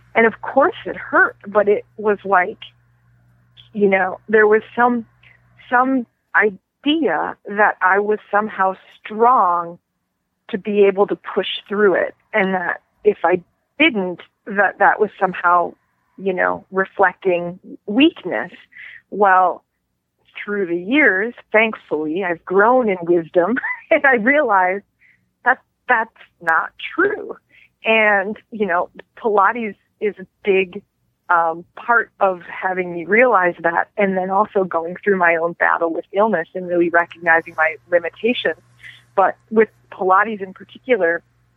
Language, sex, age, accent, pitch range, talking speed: English, female, 40-59, American, 175-215 Hz, 130 wpm